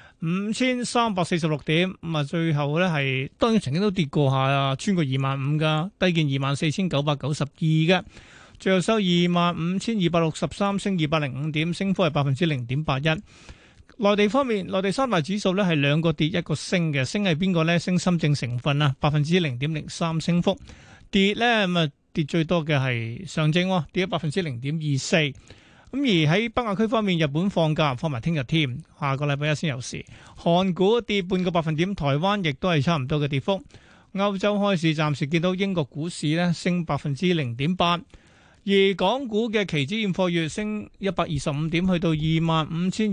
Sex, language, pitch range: male, Chinese, 150-190 Hz